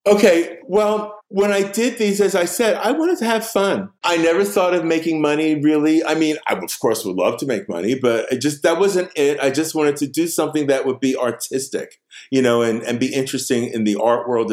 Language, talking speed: English, 240 wpm